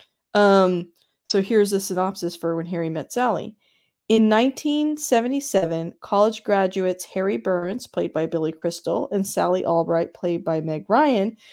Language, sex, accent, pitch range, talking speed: English, female, American, 170-210 Hz, 140 wpm